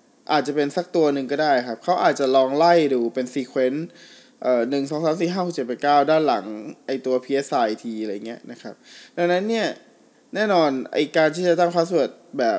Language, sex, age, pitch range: Thai, male, 20-39, 125-165 Hz